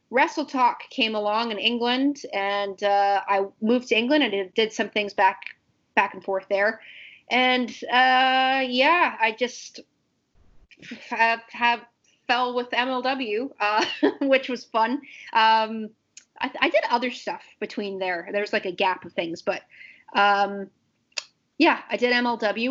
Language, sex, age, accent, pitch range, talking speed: English, female, 30-49, American, 205-250 Hz, 145 wpm